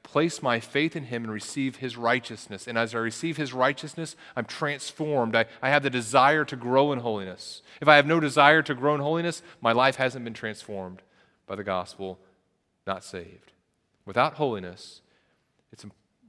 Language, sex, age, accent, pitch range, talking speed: English, male, 30-49, American, 110-150 Hz, 175 wpm